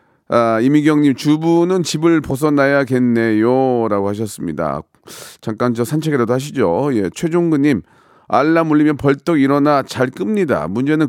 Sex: male